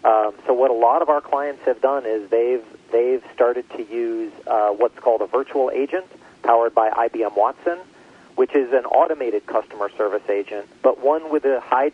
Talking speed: 190 wpm